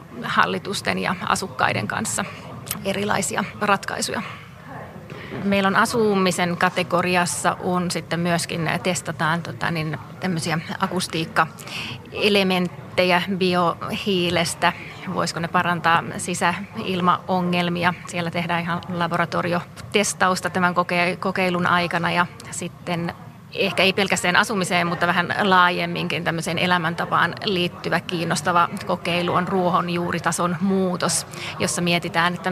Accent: native